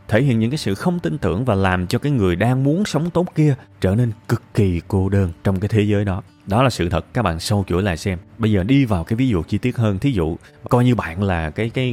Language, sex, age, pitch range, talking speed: Vietnamese, male, 20-39, 95-140 Hz, 285 wpm